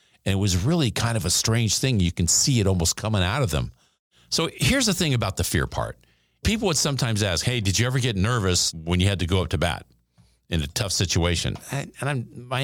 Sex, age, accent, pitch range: male, 50-69, American, 90-130 Hz